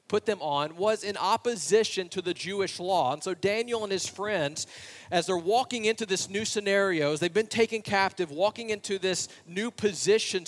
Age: 40-59